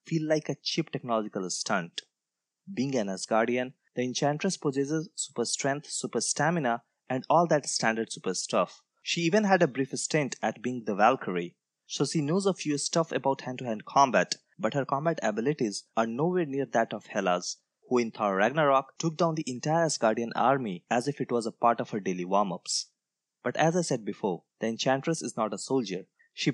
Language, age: English, 20-39